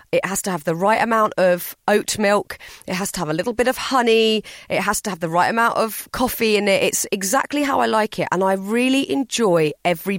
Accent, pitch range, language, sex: British, 185-235 Hz, English, female